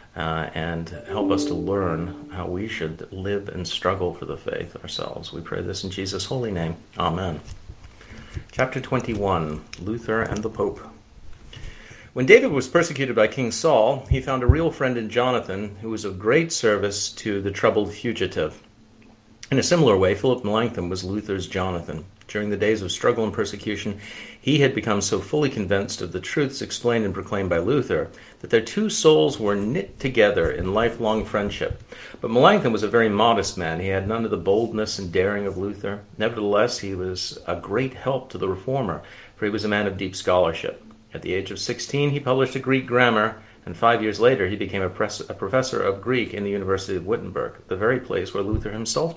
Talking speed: 195 wpm